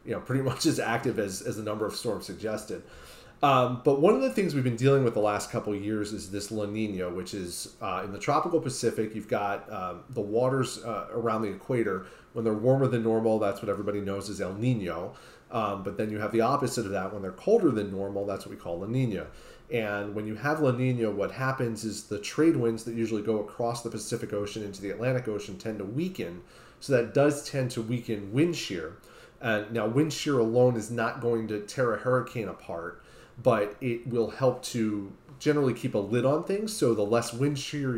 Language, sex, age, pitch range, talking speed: English, male, 30-49, 105-125 Hz, 225 wpm